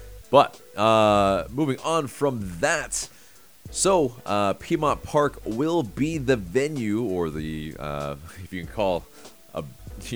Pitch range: 85-115 Hz